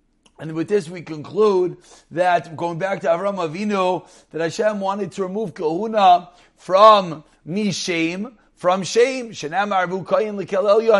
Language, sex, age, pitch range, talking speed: English, male, 30-49, 150-190 Hz, 115 wpm